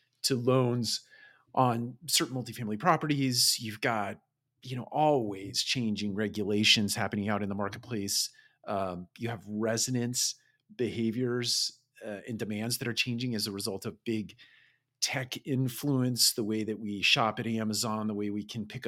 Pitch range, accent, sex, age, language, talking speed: 105-130 Hz, American, male, 40-59, English, 155 wpm